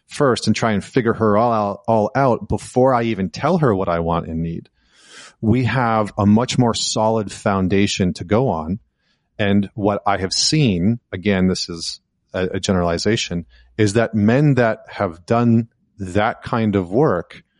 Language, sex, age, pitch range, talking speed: English, male, 30-49, 95-115 Hz, 175 wpm